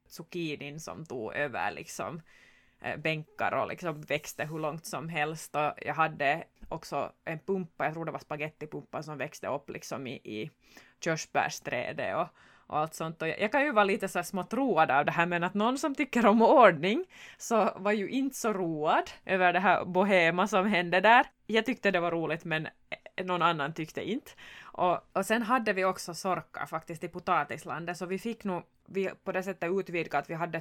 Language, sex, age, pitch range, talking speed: Swedish, female, 20-39, 160-200 Hz, 195 wpm